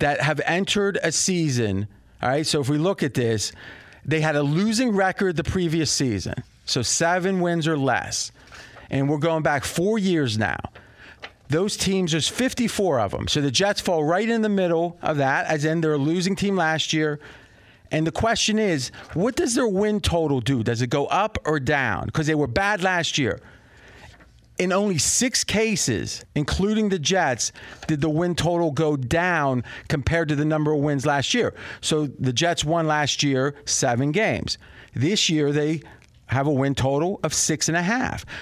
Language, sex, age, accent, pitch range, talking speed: English, male, 40-59, American, 135-175 Hz, 185 wpm